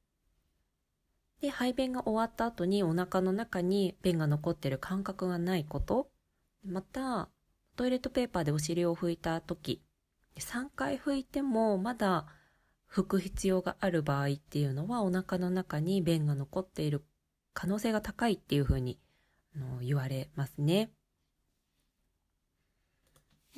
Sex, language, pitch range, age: female, Japanese, 150-210 Hz, 20-39